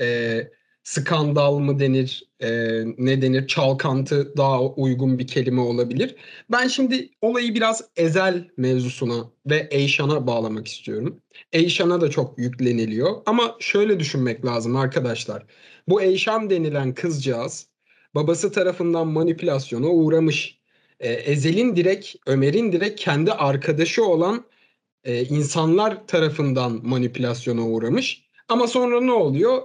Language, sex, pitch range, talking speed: Turkish, male, 135-215 Hz, 115 wpm